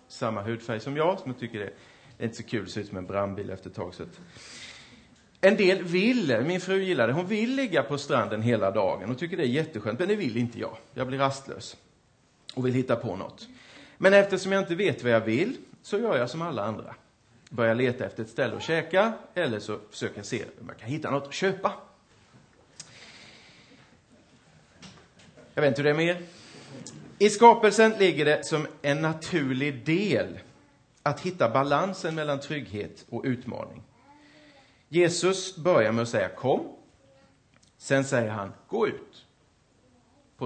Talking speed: 175 wpm